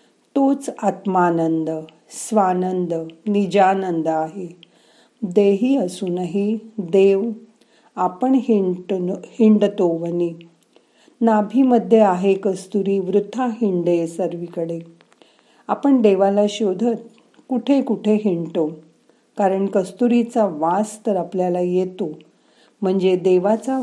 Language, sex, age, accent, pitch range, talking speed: Marathi, female, 40-59, native, 170-220 Hz, 80 wpm